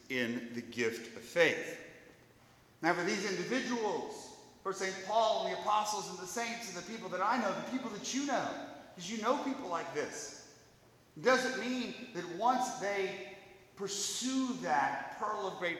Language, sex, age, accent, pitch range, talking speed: English, male, 40-59, American, 170-230 Hz, 170 wpm